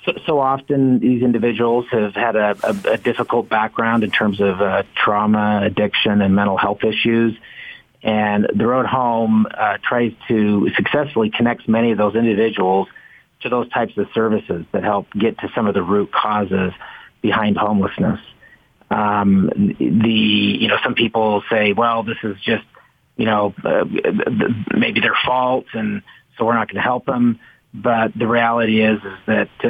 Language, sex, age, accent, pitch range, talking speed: English, male, 40-59, American, 105-120 Hz, 165 wpm